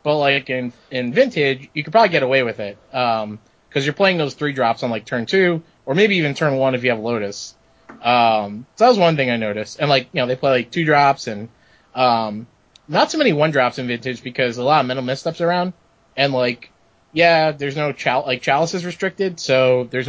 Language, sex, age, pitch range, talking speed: English, male, 20-39, 120-155 Hz, 230 wpm